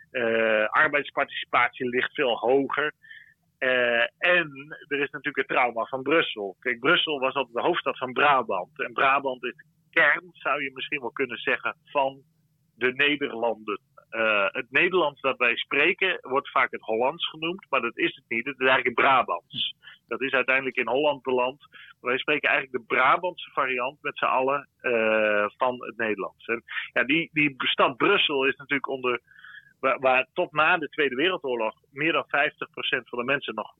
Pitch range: 125-155 Hz